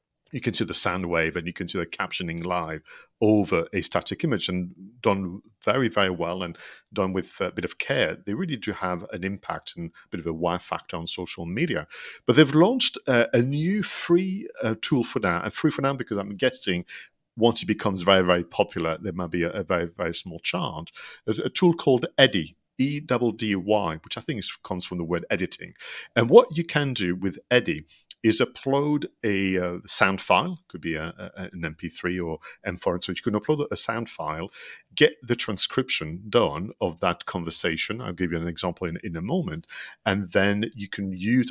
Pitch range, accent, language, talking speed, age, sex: 90-120 Hz, British, English, 205 wpm, 40-59, male